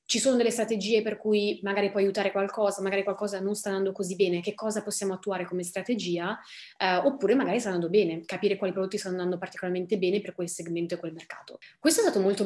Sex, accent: female, native